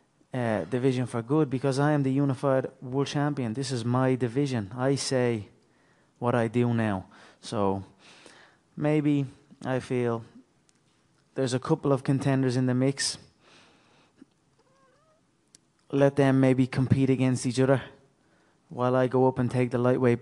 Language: English